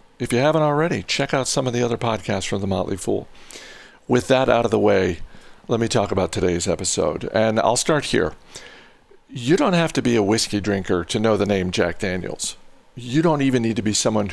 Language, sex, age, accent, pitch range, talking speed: English, male, 50-69, American, 100-120 Hz, 220 wpm